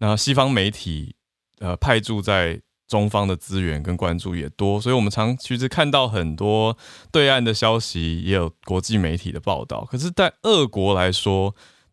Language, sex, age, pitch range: Chinese, male, 20-39, 90-120 Hz